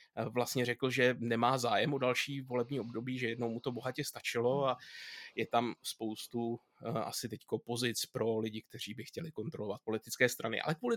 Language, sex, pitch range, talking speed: Czech, male, 115-140 Hz, 175 wpm